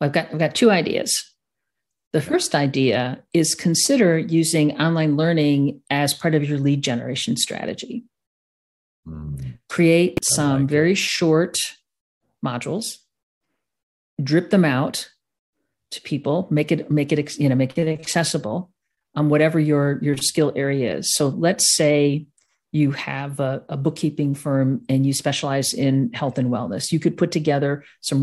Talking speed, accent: 145 wpm, American